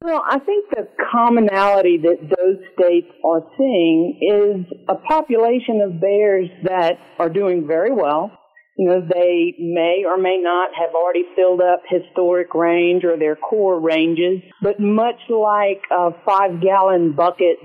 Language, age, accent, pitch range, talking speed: English, 50-69, American, 175-210 Hz, 150 wpm